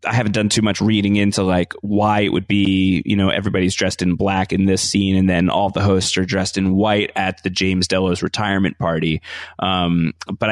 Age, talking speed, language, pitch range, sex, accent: 30-49, 215 wpm, English, 95-115 Hz, male, American